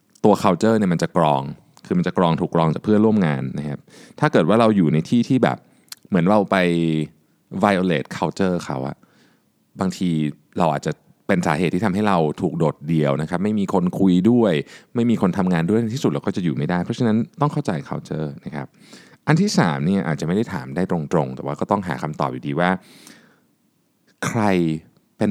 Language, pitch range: Thai, 75-120 Hz